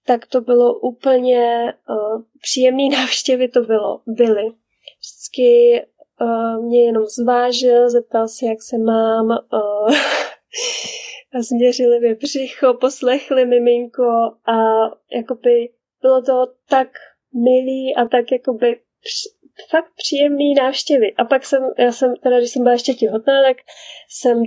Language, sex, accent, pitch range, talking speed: Czech, female, native, 230-260 Hz, 125 wpm